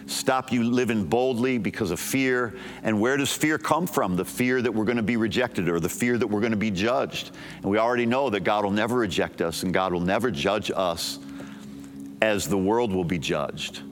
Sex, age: male, 50-69